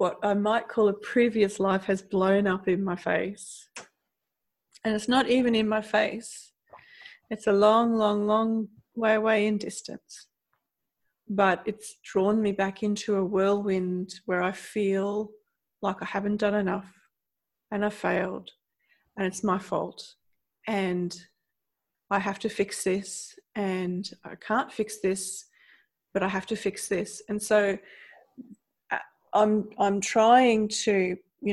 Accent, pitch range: Australian, 190-215 Hz